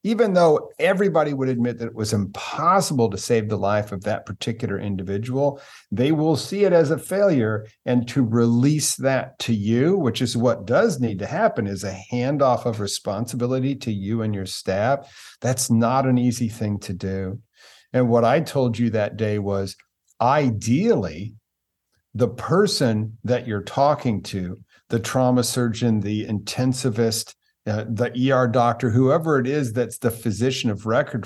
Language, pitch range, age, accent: English, 110-130 Hz, 50-69, American